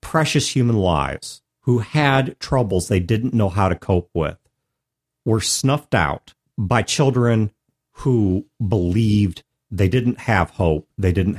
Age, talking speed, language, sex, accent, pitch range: 50-69, 135 wpm, English, male, American, 95-130 Hz